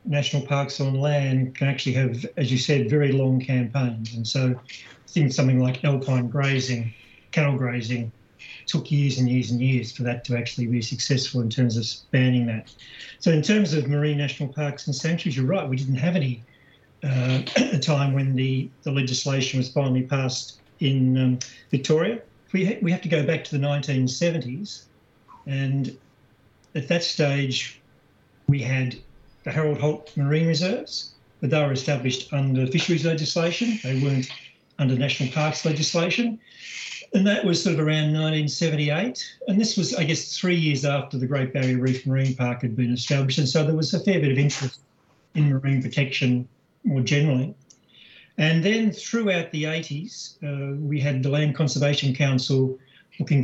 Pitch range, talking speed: 130-155 Hz, 170 wpm